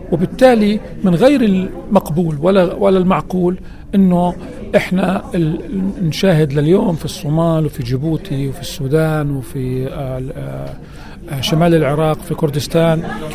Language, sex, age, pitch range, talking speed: Arabic, male, 40-59, 155-205 Hz, 110 wpm